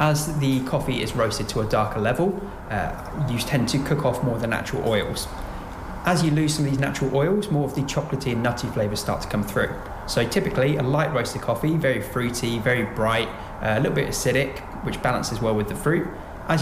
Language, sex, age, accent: English, male, 20-39, British